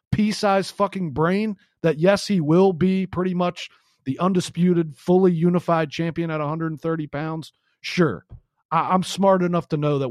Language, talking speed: English, 160 wpm